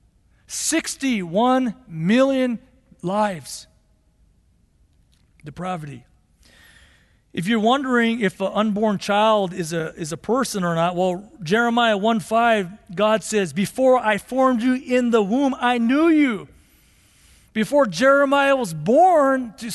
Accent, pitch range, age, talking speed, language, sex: American, 175-255 Hz, 40-59, 115 wpm, English, male